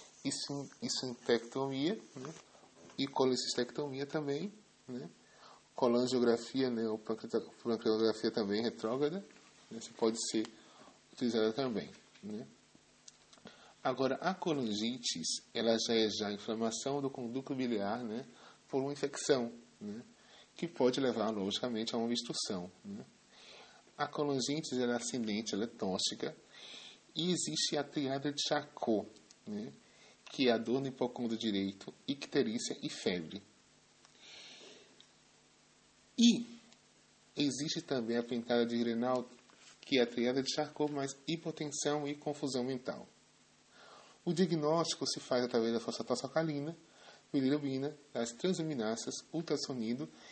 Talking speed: 120 wpm